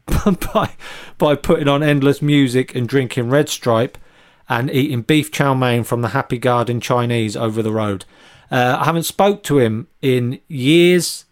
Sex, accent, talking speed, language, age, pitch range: male, British, 165 wpm, English, 40-59, 130-165 Hz